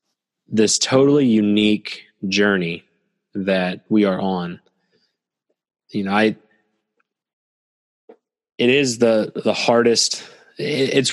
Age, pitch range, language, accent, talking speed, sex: 20-39, 95-110 Hz, English, American, 90 wpm, male